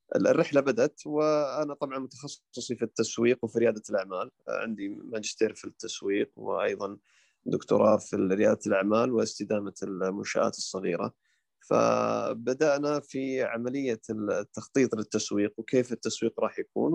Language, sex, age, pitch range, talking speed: Arabic, male, 20-39, 110-140 Hz, 110 wpm